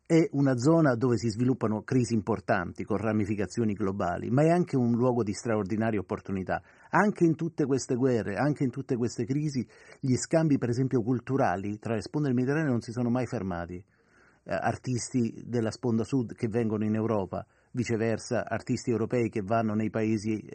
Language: Italian